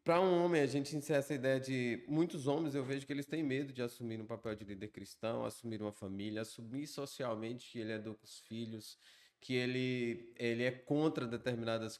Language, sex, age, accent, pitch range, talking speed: Portuguese, male, 20-39, Brazilian, 110-140 Hz, 210 wpm